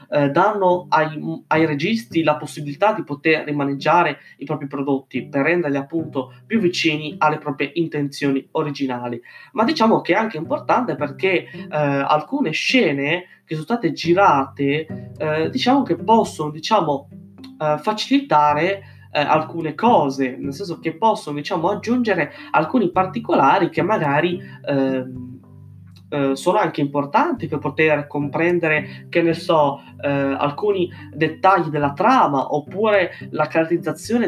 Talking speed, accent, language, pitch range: 130 wpm, native, Italian, 140-175 Hz